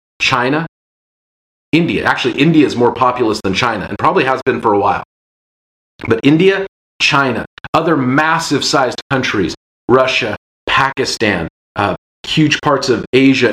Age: 40-59